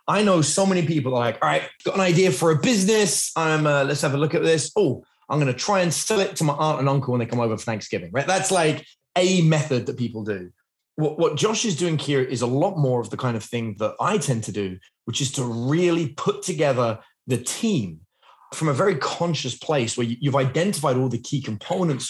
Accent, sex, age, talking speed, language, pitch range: British, male, 20-39, 245 wpm, English, 120-160 Hz